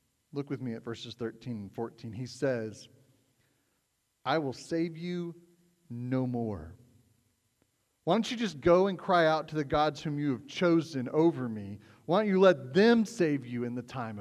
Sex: male